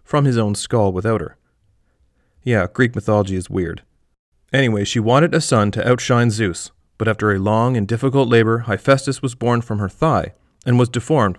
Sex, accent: male, American